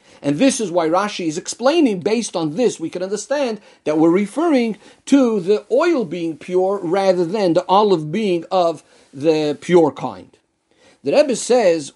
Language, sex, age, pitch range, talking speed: English, male, 50-69, 165-225 Hz, 165 wpm